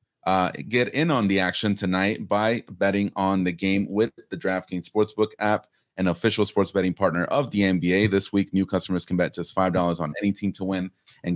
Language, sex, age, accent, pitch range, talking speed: English, male, 30-49, American, 90-105 Hz, 205 wpm